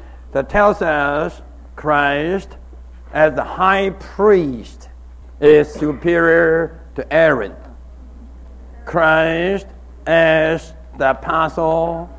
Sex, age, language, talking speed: male, 60-79, English, 80 wpm